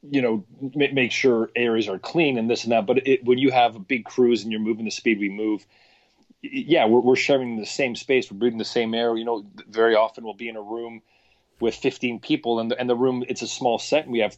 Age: 30-49